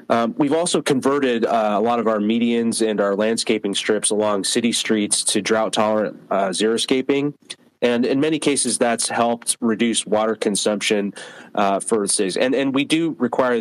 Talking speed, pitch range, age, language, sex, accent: 170 wpm, 105-120 Hz, 30-49, English, male, American